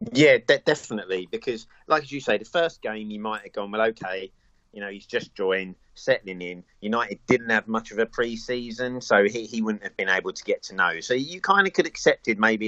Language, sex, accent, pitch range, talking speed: English, male, British, 95-115 Hz, 235 wpm